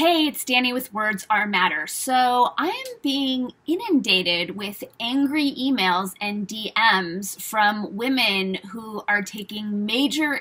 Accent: American